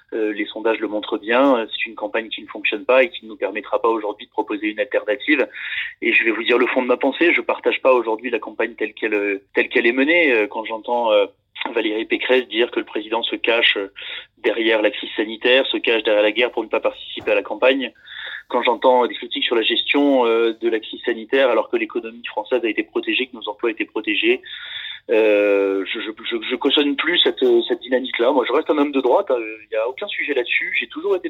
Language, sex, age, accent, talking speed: French, male, 30-49, French, 230 wpm